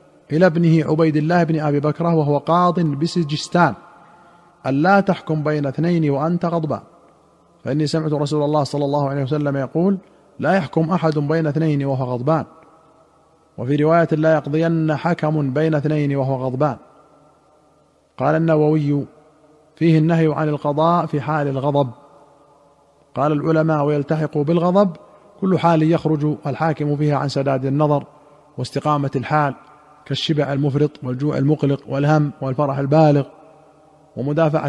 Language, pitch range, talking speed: Arabic, 140-160 Hz, 125 wpm